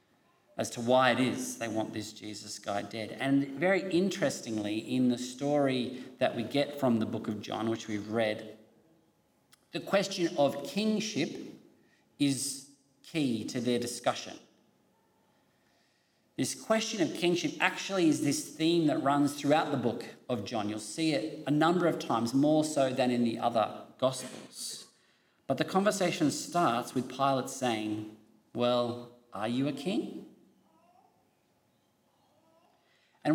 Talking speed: 140 wpm